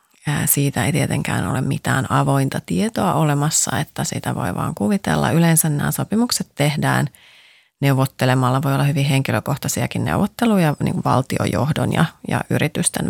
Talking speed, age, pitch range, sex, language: 135 wpm, 30-49, 135-170 Hz, female, Finnish